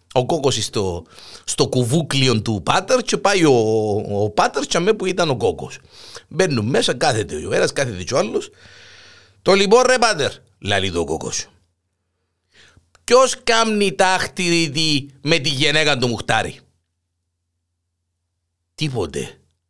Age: 50-69